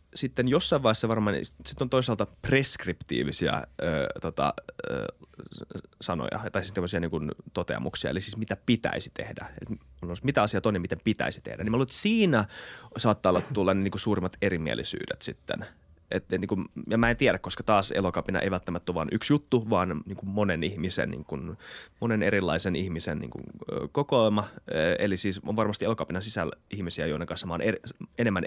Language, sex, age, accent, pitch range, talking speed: Finnish, male, 20-39, native, 90-110 Hz, 175 wpm